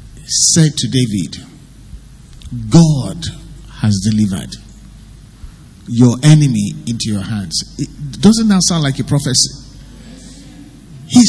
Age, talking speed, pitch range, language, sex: 50-69, 95 wpm, 125-165 Hz, English, male